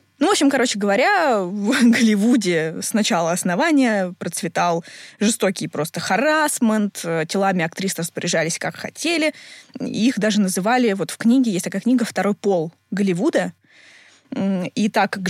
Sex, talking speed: female, 135 wpm